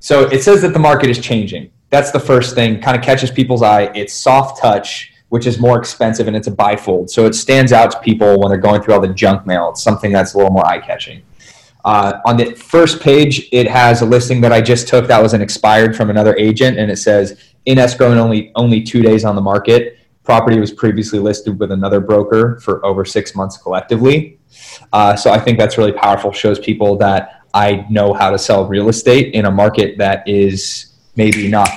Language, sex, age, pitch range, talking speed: English, male, 20-39, 100-120 Hz, 220 wpm